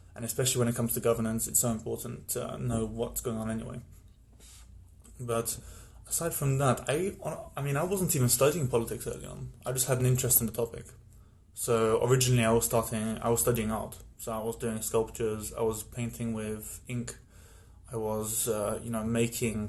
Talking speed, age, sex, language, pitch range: 190 wpm, 20-39, male, English, 105-120 Hz